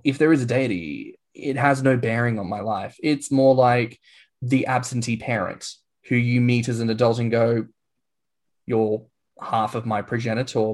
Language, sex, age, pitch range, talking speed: English, male, 10-29, 110-135 Hz, 175 wpm